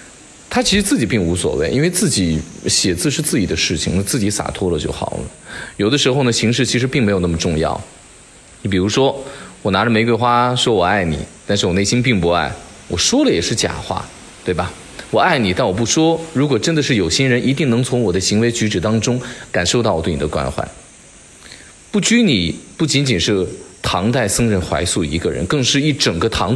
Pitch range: 90-130 Hz